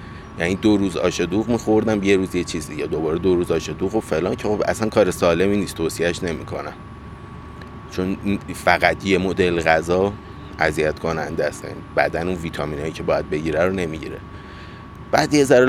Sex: male